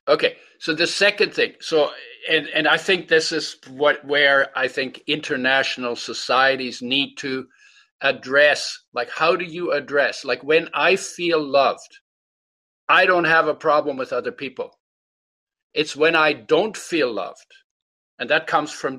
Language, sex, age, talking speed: English, male, 50-69, 155 wpm